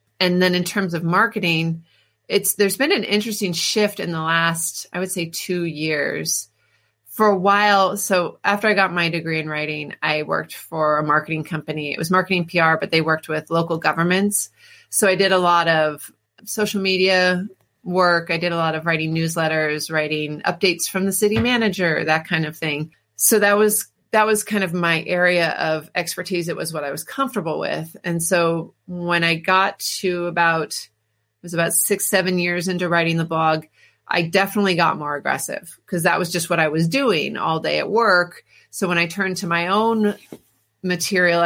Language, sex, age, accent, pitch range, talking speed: English, female, 30-49, American, 165-195 Hz, 195 wpm